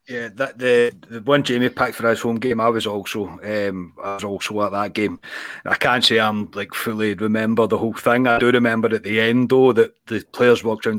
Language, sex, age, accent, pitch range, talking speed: English, male, 30-49, British, 110-145 Hz, 235 wpm